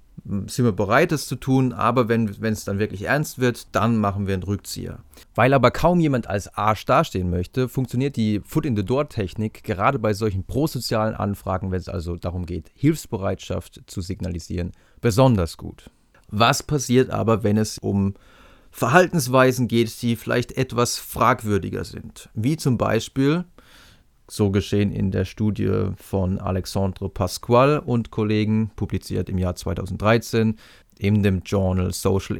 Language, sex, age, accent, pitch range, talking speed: German, male, 30-49, German, 95-125 Hz, 150 wpm